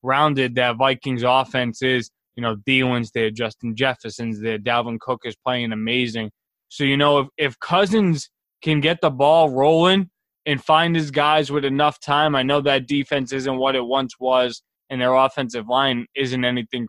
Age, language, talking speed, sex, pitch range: 20-39, English, 180 wpm, male, 135-165 Hz